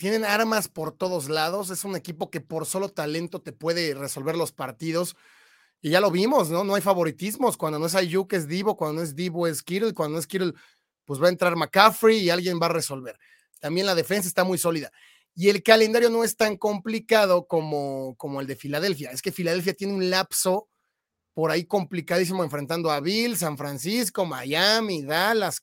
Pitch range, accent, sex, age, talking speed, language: 165-215 Hz, Mexican, male, 30-49, 200 wpm, Spanish